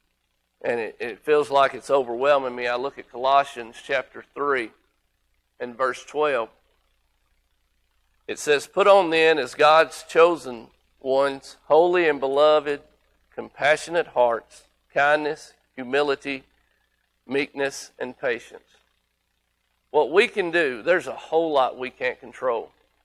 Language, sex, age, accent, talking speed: English, male, 50-69, American, 120 wpm